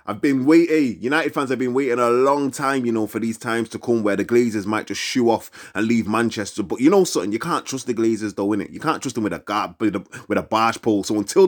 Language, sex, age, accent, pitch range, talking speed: English, male, 20-39, British, 105-140 Hz, 270 wpm